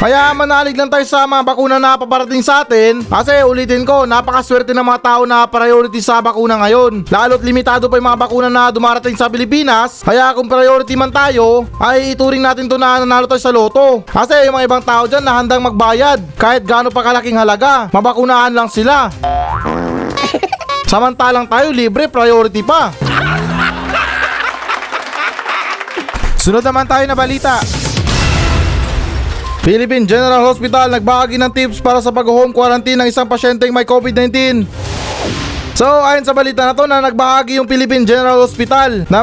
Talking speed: 155 wpm